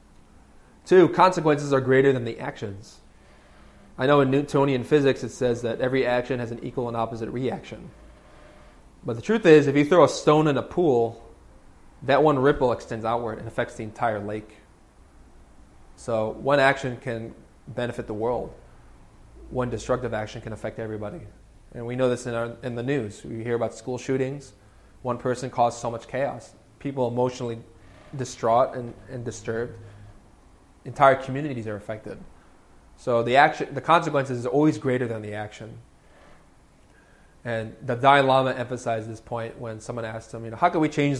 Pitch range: 110-130 Hz